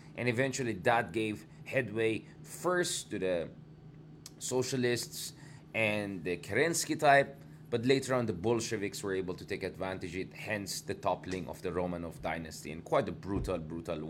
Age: 20-39